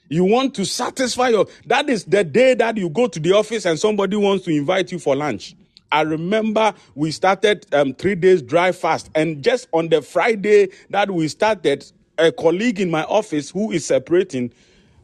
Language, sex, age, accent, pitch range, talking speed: English, male, 40-59, Nigerian, 165-240 Hz, 190 wpm